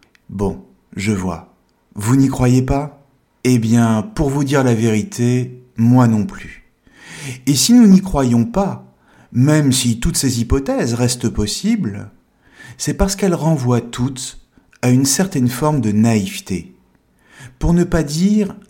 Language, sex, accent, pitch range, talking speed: French, male, French, 110-150 Hz, 145 wpm